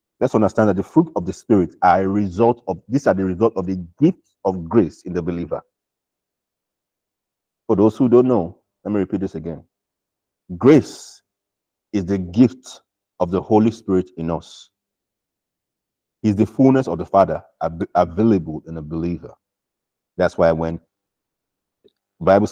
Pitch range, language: 85-110 Hz, English